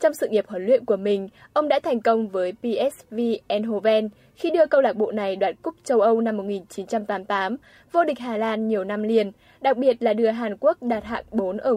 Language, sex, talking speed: Vietnamese, female, 220 wpm